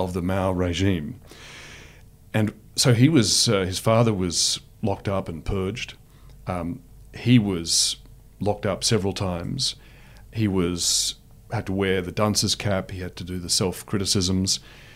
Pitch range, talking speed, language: 95-120 Hz, 150 wpm, English